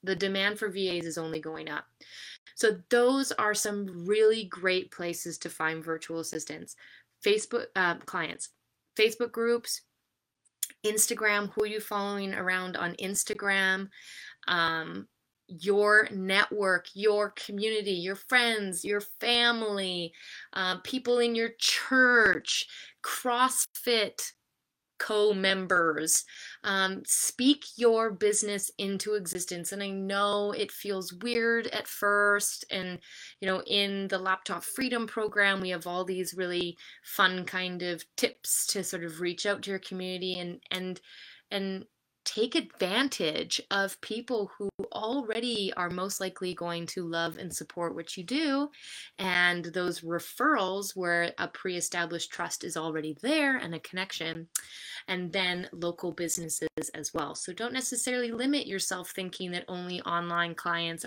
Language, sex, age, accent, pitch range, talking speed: English, female, 20-39, American, 175-220 Hz, 135 wpm